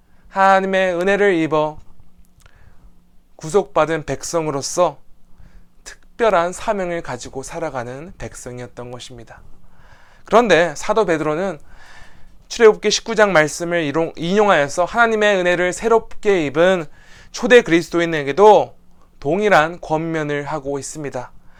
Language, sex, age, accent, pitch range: Korean, male, 20-39, native, 135-185 Hz